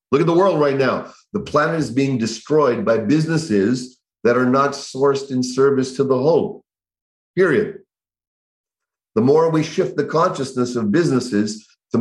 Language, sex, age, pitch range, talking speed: English, male, 40-59, 120-150 Hz, 160 wpm